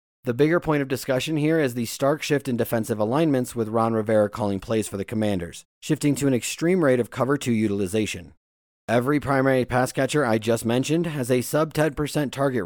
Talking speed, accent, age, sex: 195 wpm, American, 30-49, male